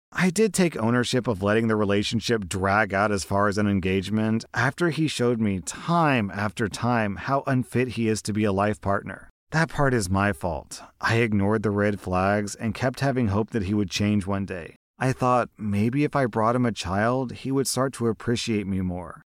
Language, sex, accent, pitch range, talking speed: English, male, American, 100-125 Hz, 210 wpm